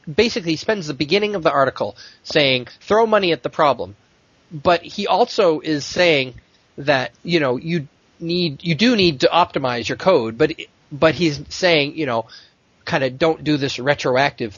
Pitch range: 125-165 Hz